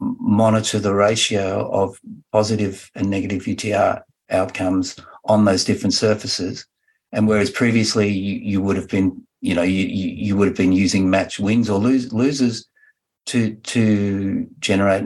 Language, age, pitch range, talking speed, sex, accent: English, 50-69, 95-130 Hz, 145 wpm, male, Australian